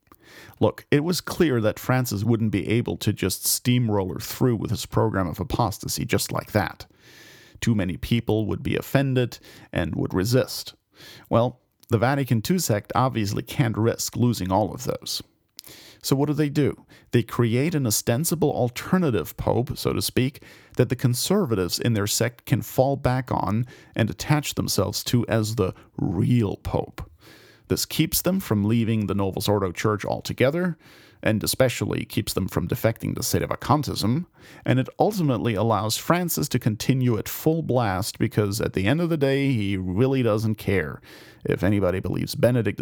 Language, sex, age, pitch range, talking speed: English, male, 40-59, 105-135 Hz, 165 wpm